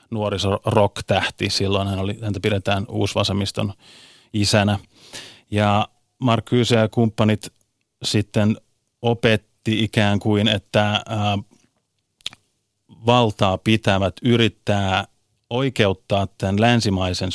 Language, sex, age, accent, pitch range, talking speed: Finnish, male, 30-49, native, 100-110 Hz, 85 wpm